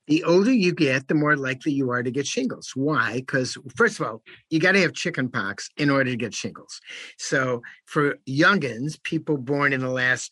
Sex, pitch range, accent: male, 125-155 Hz, American